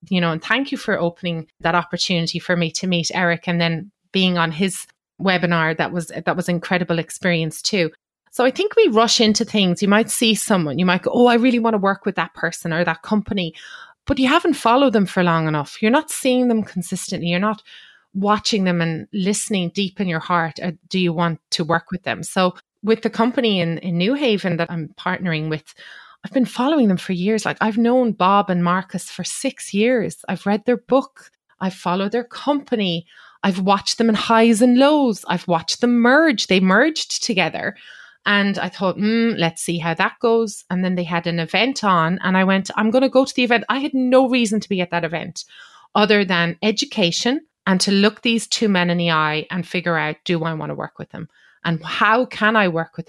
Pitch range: 175-230 Hz